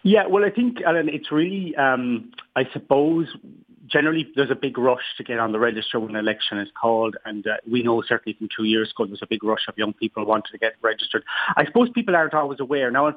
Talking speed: 245 wpm